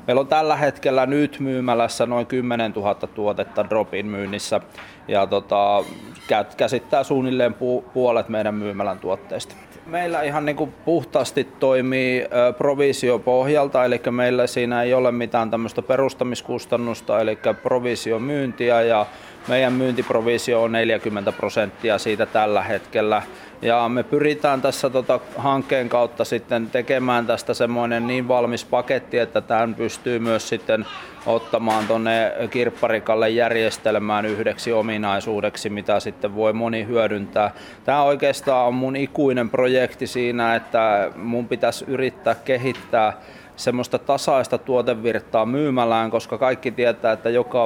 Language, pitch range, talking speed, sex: Finnish, 110-130 Hz, 120 wpm, male